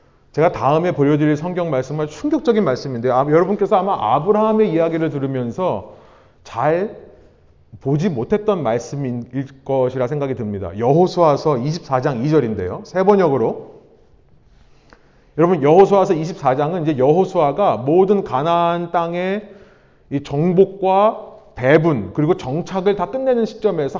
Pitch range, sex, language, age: 145-205 Hz, male, Korean, 30-49